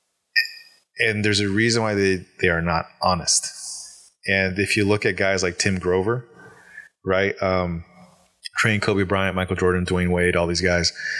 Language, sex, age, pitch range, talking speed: English, male, 20-39, 90-105 Hz, 165 wpm